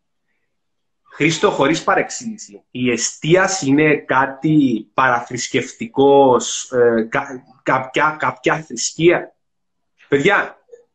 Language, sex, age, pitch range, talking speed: Greek, male, 30-49, 165-235 Hz, 60 wpm